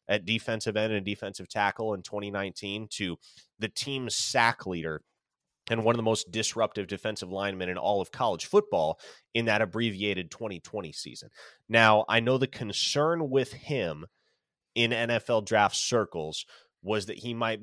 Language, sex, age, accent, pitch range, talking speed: English, male, 30-49, American, 100-115 Hz, 155 wpm